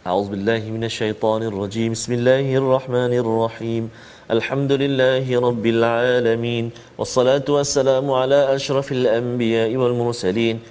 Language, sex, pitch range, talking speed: Malayalam, male, 115-140 Hz, 105 wpm